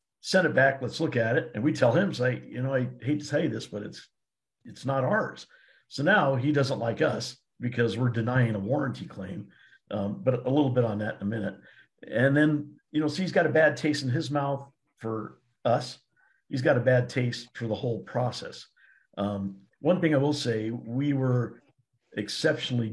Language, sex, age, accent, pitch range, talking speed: English, male, 50-69, American, 110-135 Hz, 210 wpm